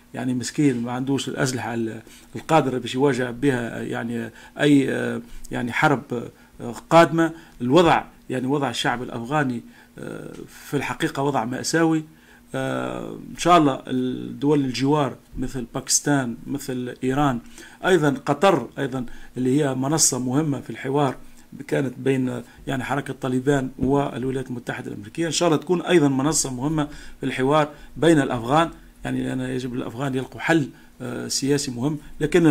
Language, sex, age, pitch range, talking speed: Arabic, male, 40-59, 125-150 Hz, 125 wpm